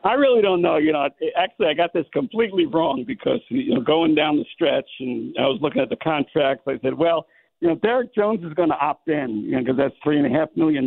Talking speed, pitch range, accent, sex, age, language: 260 wpm, 125-170 Hz, American, male, 60-79, English